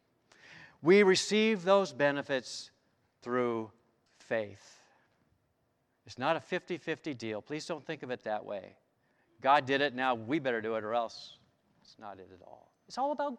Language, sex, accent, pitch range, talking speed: English, male, American, 130-200 Hz, 160 wpm